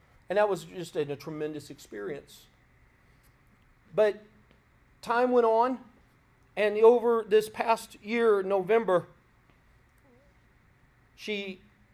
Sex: male